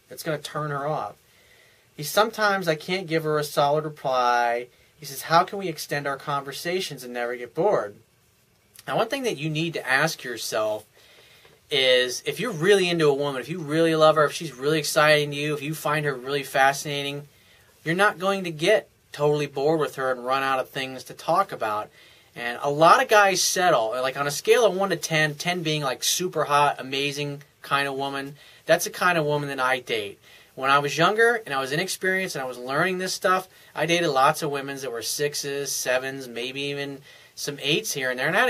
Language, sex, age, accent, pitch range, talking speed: English, male, 30-49, American, 140-170 Hz, 220 wpm